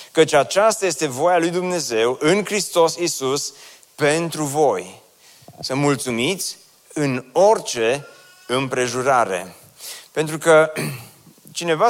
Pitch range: 125-170 Hz